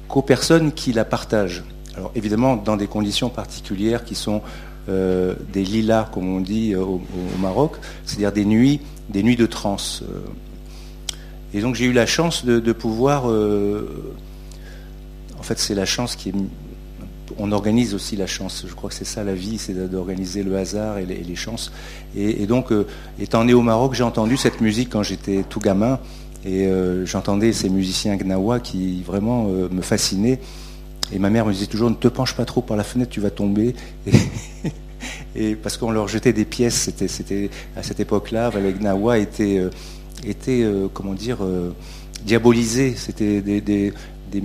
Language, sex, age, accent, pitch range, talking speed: French, male, 50-69, French, 95-115 Hz, 180 wpm